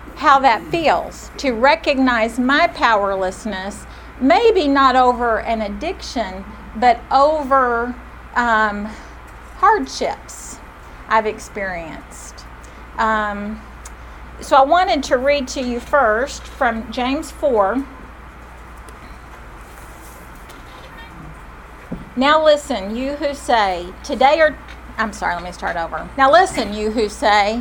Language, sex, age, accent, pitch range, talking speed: English, female, 50-69, American, 180-260 Hz, 105 wpm